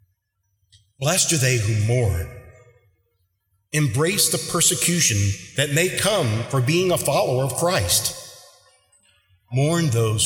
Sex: male